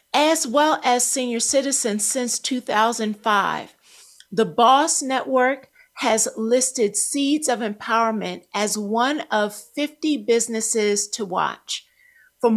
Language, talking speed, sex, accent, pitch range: English, 110 wpm, female, American, 220-270 Hz